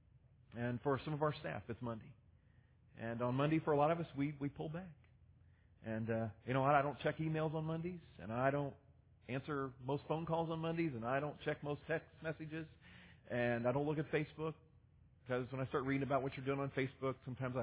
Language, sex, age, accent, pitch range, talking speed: English, male, 40-59, American, 120-160 Hz, 225 wpm